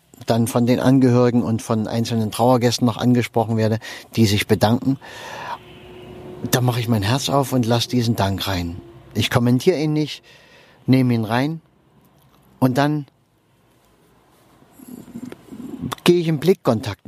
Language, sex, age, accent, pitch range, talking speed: German, male, 50-69, German, 115-145 Hz, 135 wpm